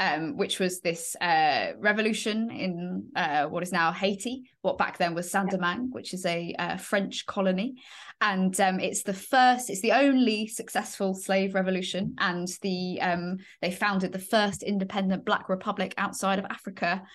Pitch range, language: 180-205 Hz, English